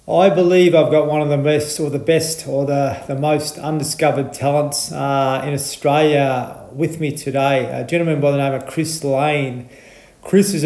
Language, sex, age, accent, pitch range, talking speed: English, male, 30-49, Australian, 135-155 Hz, 185 wpm